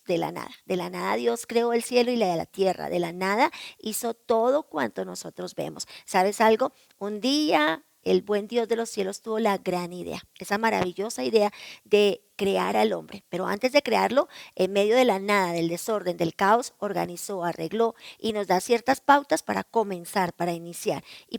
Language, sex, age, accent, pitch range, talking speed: Spanish, male, 40-59, American, 195-235 Hz, 195 wpm